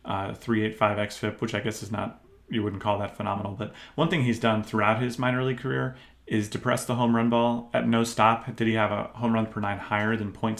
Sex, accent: male, American